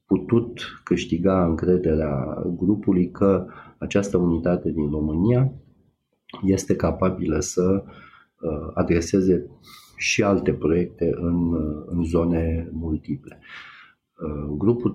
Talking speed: 85 wpm